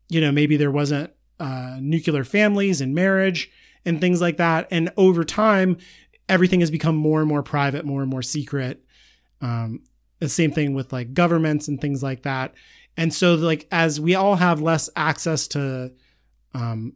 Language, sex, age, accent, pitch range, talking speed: English, male, 30-49, American, 135-170 Hz, 175 wpm